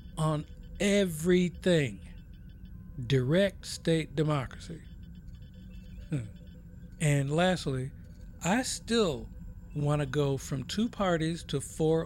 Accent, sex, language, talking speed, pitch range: American, male, English, 90 wpm, 130-170 Hz